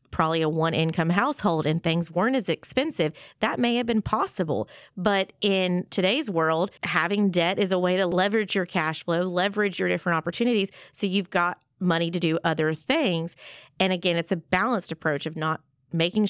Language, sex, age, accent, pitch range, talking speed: English, female, 30-49, American, 165-200 Hz, 185 wpm